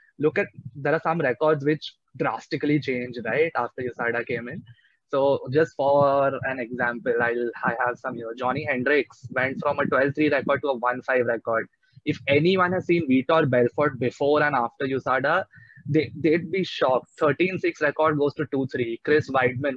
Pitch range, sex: 125-155 Hz, male